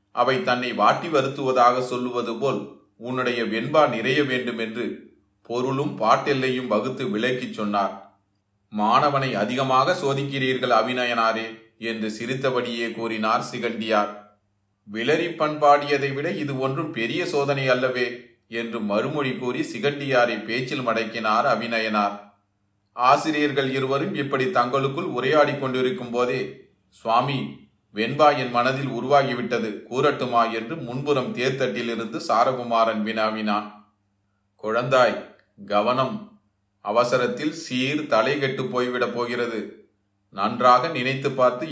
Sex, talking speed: male, 95 wpm